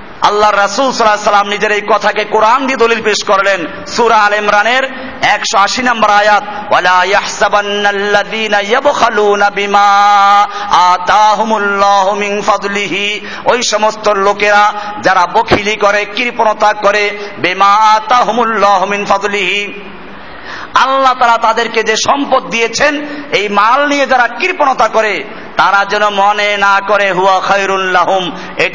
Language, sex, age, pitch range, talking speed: Bengali, male, 50-69, 200-235 Hz, 55 wpm